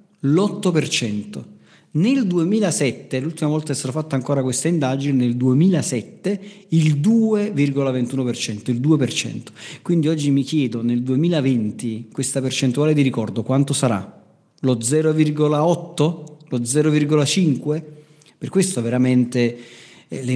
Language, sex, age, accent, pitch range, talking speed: Italian, male, 40-59, native, 125-160 Hz, 110 wpm